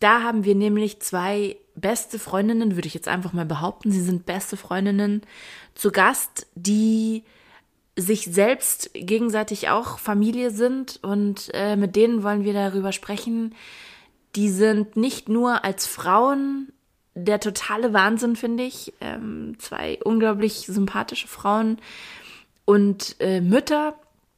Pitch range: 195-230 Hz